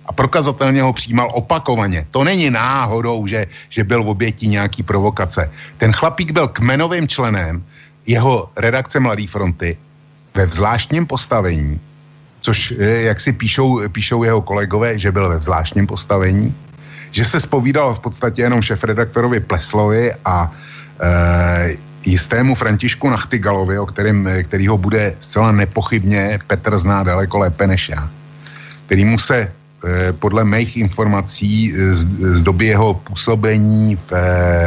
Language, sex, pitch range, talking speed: Slovak, male, 95-120 Hz, 130 wpm